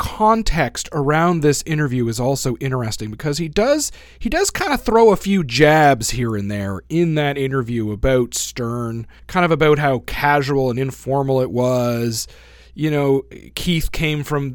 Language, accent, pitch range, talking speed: English, American, 115-150 Hz, 165 wpm